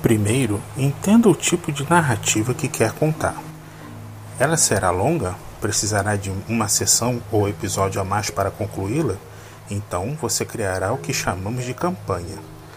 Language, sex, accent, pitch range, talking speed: Portuguese, male, Brazilian, 105-165 Hz, 140 wpm